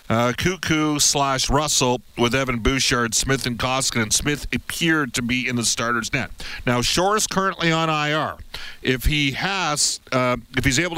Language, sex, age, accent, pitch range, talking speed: English, male, 50-69, American, 120-145 Hz, 175 wpm